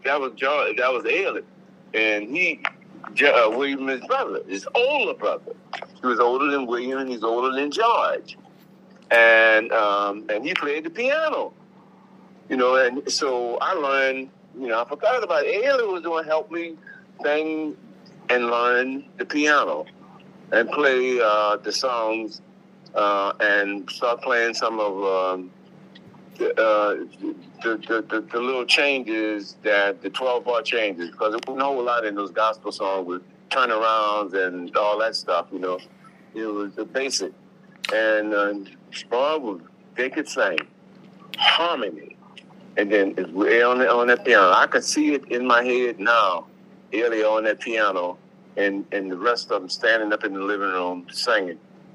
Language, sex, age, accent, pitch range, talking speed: English, male, 60-79, American, 105-145 Hz, 160 wpm